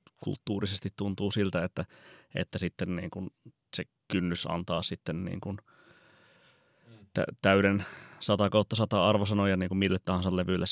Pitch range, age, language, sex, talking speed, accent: 90-105 Hz, 30-49, Finnish, male, 125 wpm, native